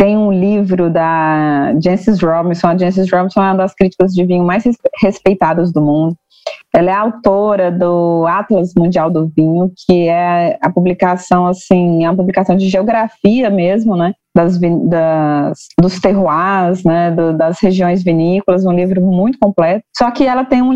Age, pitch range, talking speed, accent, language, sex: 20-39, 175-210 Hz, 165 wpm, Brazilian, Portuguese, female